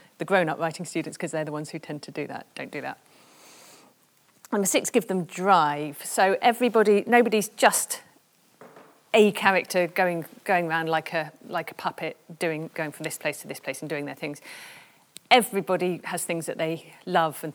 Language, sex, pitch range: English, female, 155-195 Hz